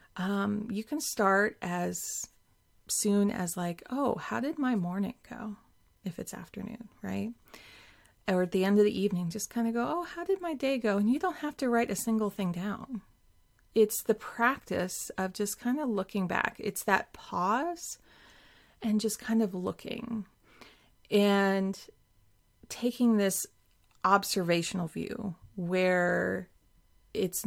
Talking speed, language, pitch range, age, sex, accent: 150 wpm, English, 180-225 Hz, 30-49, female, American